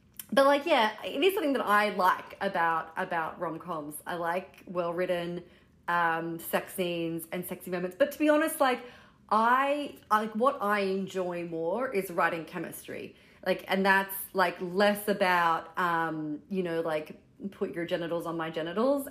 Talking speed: 160 wpm